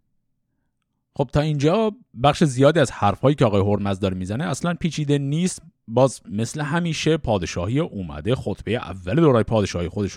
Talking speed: 150 wpm